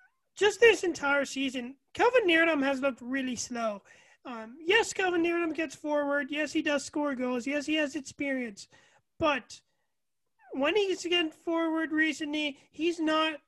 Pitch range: 255-310 Hz